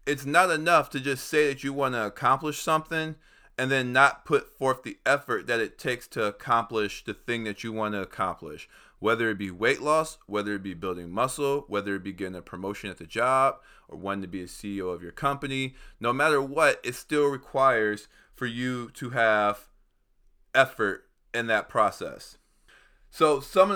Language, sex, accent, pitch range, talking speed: English, male, American, 115-140 Hz, 190 wpm